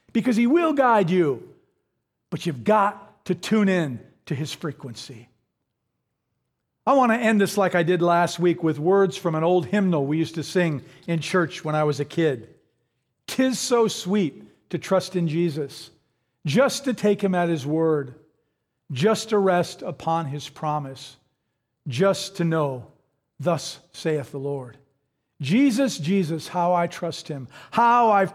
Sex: male